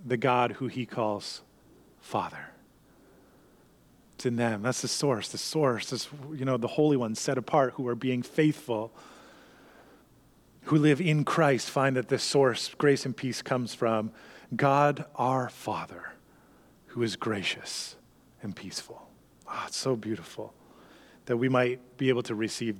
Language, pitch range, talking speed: English, 120-150 Hz, 155 wpm